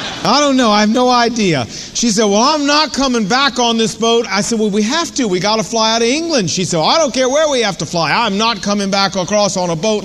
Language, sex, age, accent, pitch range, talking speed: English, male, 50-69, American, 195-260 Hz, 285 wpm